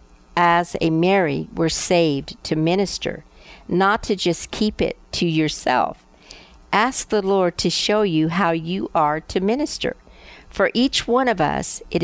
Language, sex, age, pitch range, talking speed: English, female, 50-69, 155-195 Hz, 155 wpm